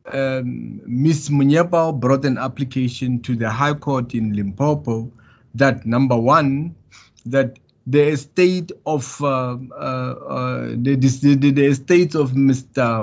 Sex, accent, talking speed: male, South African, 130 wpm